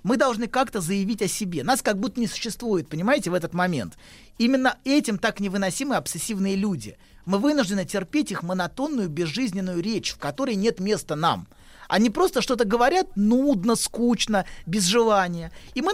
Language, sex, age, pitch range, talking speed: Russian, male, 30-49, 175-245 Hz, 160 wpm